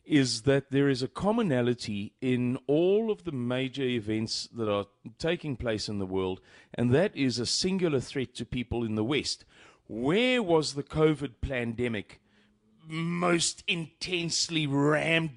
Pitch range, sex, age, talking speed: 130-170 Hz, male, 40-59, 150 wpm